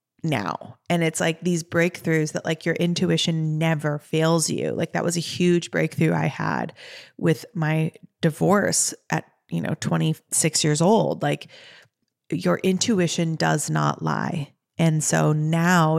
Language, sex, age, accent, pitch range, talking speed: English, female, 30-49, American, 160-180 Hz, 145 wpm